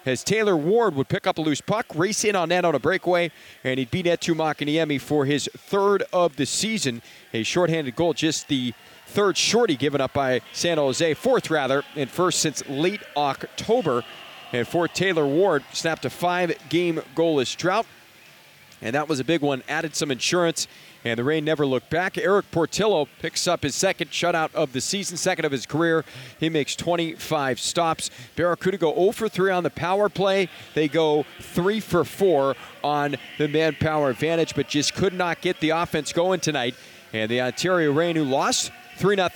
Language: English